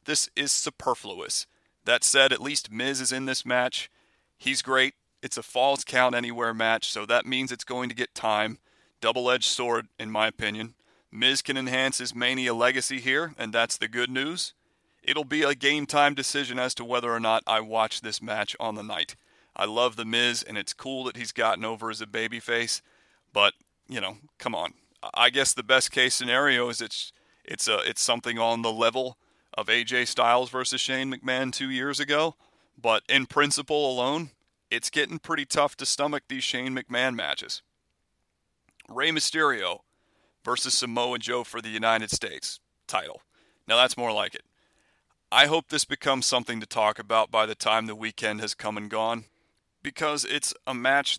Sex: male